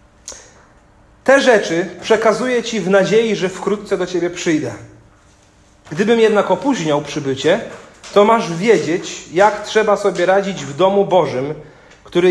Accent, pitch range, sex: native, 150-200 Hz, male